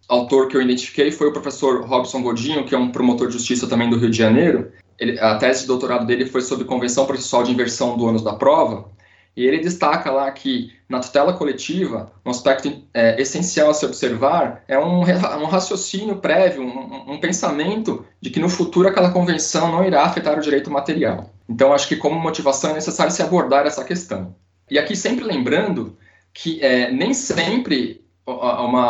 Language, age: Portuguese, 20-39